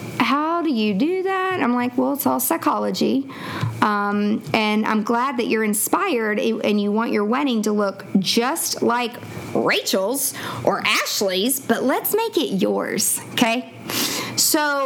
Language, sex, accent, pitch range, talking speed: English, female, American, 210-265 Hz, 155 wpm